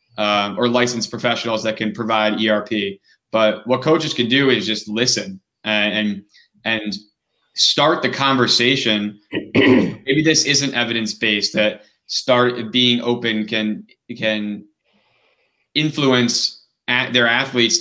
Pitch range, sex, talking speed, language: 110-130 Hz, male, 125 wpm, English